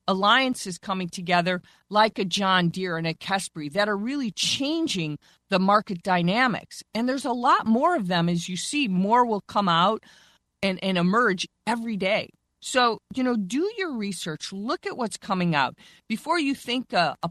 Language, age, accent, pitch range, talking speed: English, 40-59, American, 180-230 Hz, 180 wpm